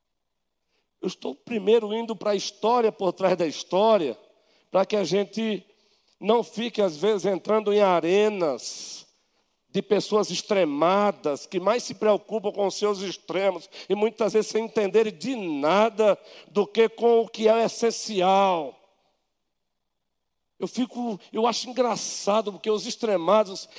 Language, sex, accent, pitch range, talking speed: Portuguese, male, Brazilian, 205-250 Hz, 140 wpm